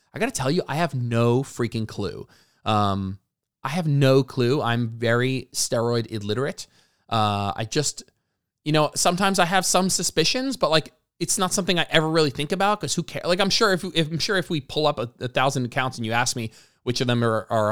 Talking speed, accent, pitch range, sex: 225 wpm, American, 110-155 Hz, male